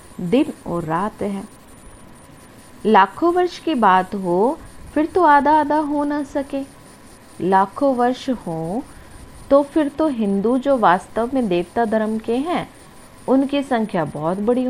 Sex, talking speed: female, 140 wpm